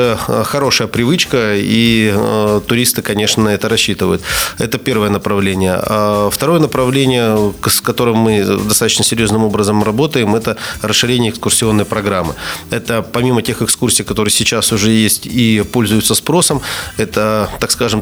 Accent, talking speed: native, 135 wpm